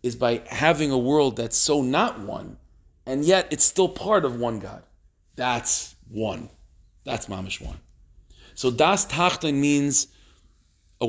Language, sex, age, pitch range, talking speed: English, male, 40-59, 100-125 Hz, 145 wpm